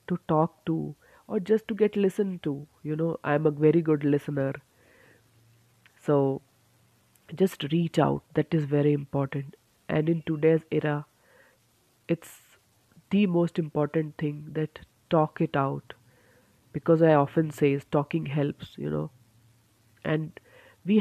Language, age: English, 30-49